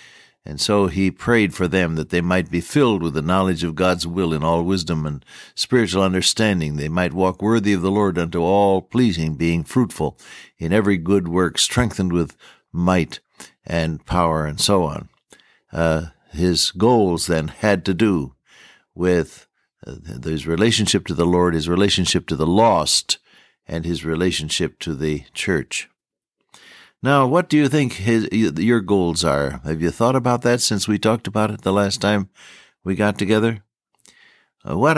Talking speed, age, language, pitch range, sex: 165 wpm, 60-79, English, 80-105 Hz, male